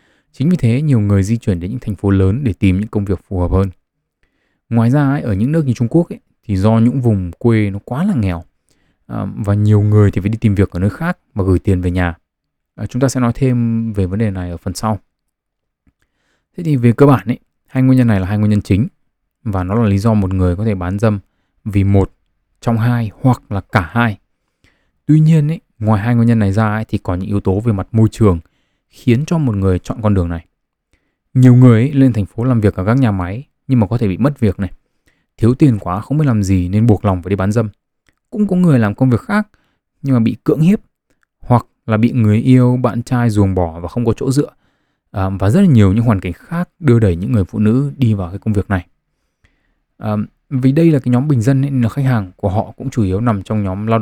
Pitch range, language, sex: 95-125 Hz, Vietnamese, male